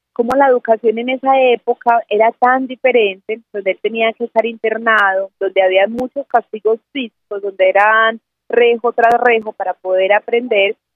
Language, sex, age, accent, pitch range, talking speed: Spanish, female, 30-49, Colombian, 205-255 Hz, 155 wpm